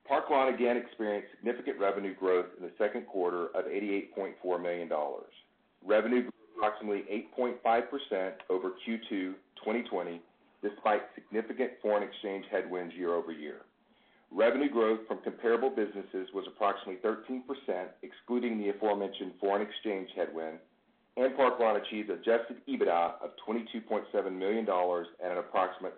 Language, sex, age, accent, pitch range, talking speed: English, male, 40-59, American, 95-120 Hz, 120 wpm